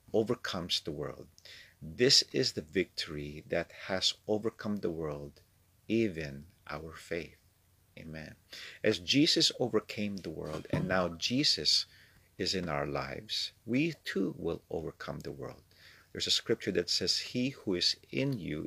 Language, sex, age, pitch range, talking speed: English, male, 50-69, 80-110 Hz, 140 wpm